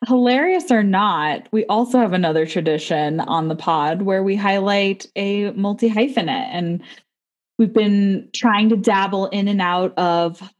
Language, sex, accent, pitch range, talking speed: English, female, American, 175-230 Hz, 145 wpm